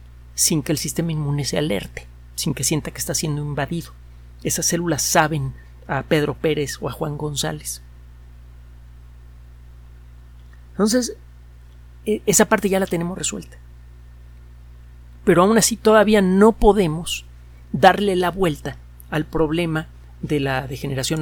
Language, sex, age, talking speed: Spanish, male, 50-69, 125 wpm